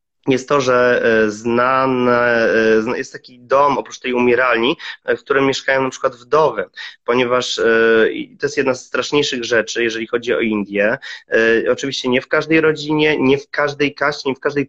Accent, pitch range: native, 115-140 Hz